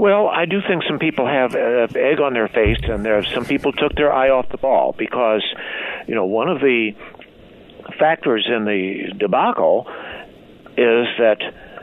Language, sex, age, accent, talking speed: English, male, 60-79, American, 165 wpm